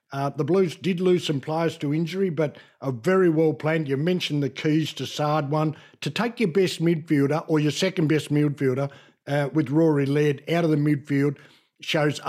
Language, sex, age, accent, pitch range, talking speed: English, male, 60-79, Australian, 150-180 Hz, 195 wpm